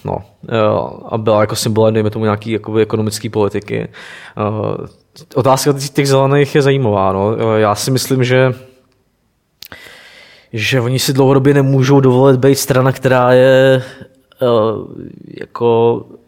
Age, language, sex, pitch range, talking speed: 20-39, Czech, male, 105-125 Hz, 115 wpm